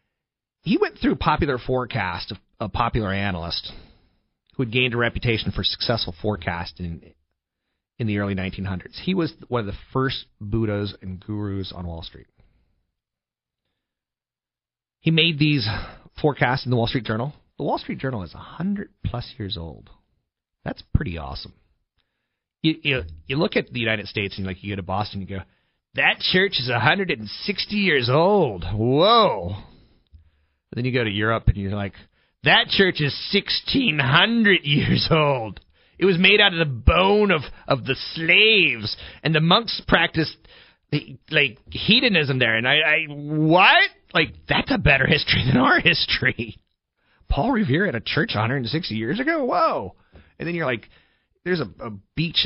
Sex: male